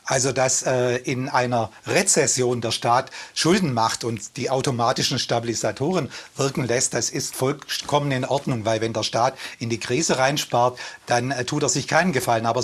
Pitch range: 115-140 Hz